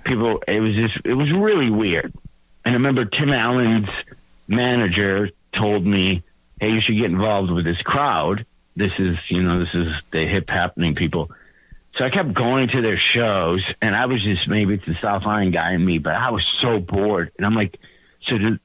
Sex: male